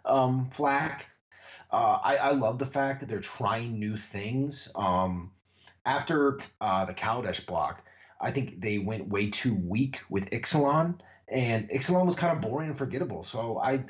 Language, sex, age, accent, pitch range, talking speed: English, male, 30-49, American, 100-150 Hz, 165 wpm